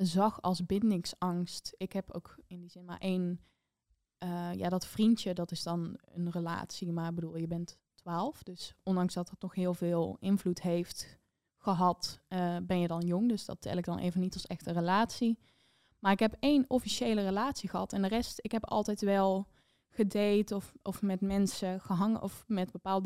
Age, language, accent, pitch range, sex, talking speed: 20-39, Dutch, Dutch, 180-220 Hz, female, 195 wpm